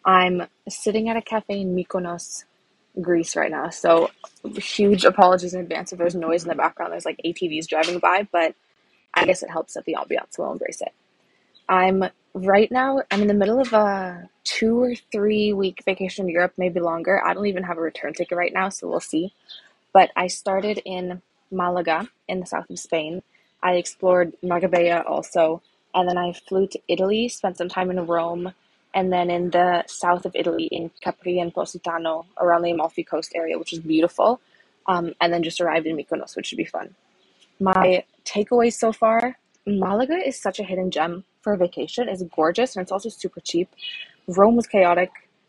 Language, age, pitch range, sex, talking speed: English, 20-39, 170-195 Hz, female, 190 wpm